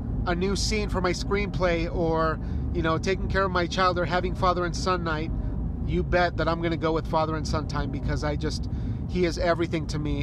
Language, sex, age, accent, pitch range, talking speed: English, male, 30-49, American, 155-185 Hz, 235 wpm